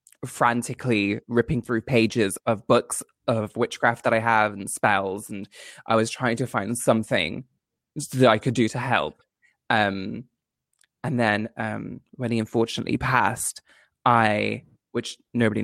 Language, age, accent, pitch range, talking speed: English, 20-39, British, 110-130 Hz, 140 wpm